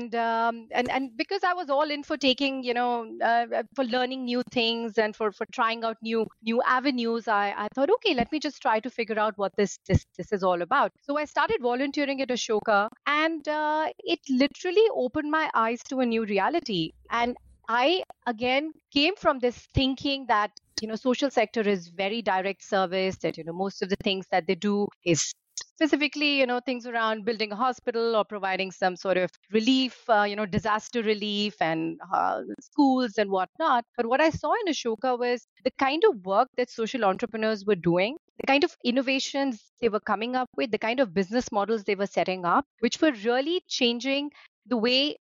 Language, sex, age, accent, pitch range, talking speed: English, female, 30-49, Indian, 210-275 Hz, 200 wpm